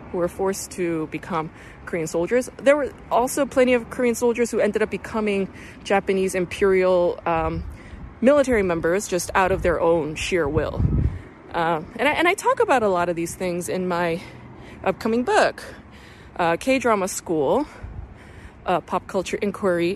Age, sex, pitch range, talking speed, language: 20-39, female, 165-230 Hz, 155 wpm, English